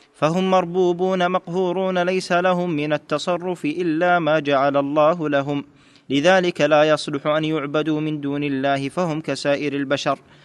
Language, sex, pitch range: Arabic, male, 140-165 Hz